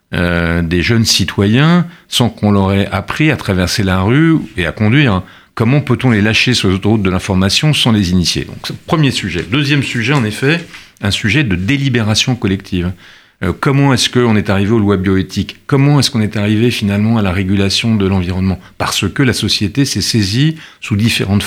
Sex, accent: male, French